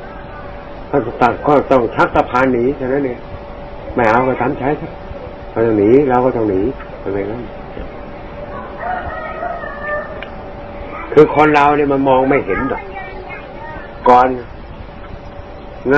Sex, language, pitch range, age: male, Thai, 125-150 Hz, 60-79